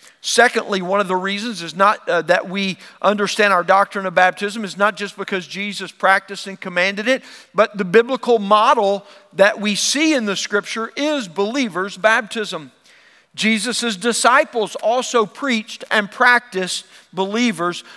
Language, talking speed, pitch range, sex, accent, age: English, 145 wpm, 200-250 Hz, male, American, 50-69